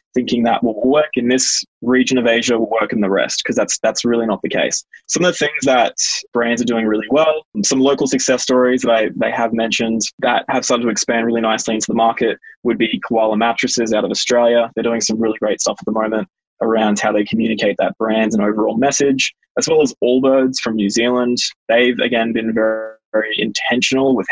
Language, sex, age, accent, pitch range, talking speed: English, male, 20-39, Australian, 110-135 Hz, 220 wpm